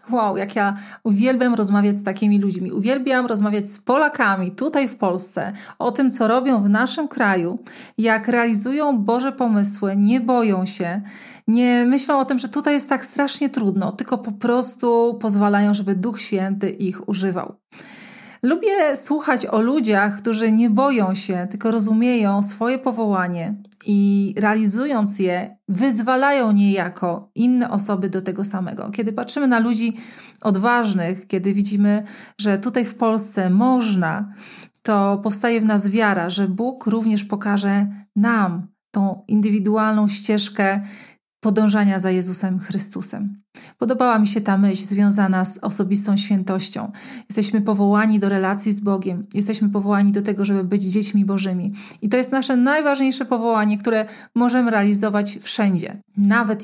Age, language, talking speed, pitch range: 40-59, Polish, 140 wpm, 200-235 Hz